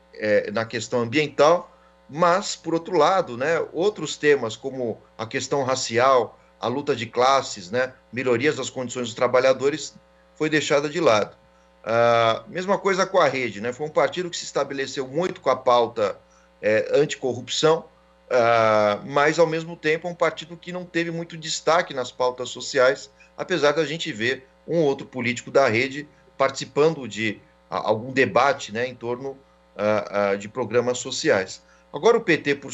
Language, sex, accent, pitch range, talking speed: Portuguese, male, Brazilian, 110-155 Hz, 155 wpm